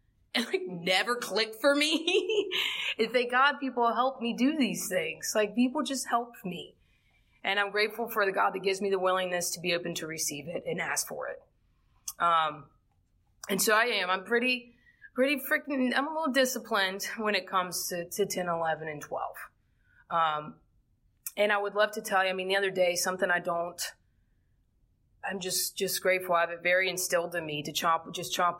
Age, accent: 20-39, American